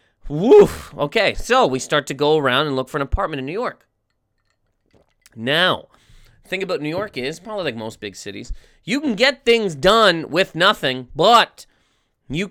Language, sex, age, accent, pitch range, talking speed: English, male, 30-49, American, 130-185 Hz, 170 wpm